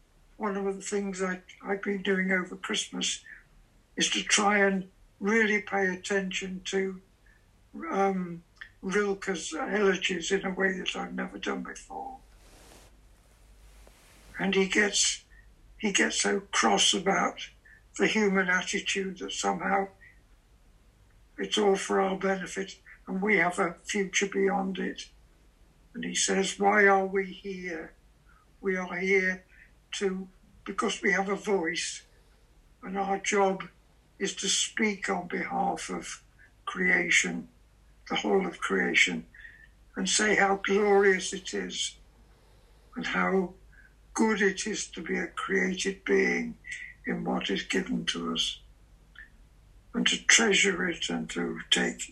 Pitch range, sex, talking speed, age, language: 170-195 Hz, male, 130 wpm, 60-79, English